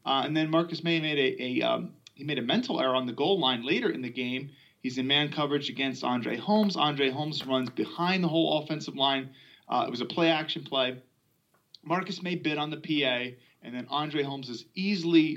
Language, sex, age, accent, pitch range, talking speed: English, male, 30-49, American, 135-180 Hz, 215 wpm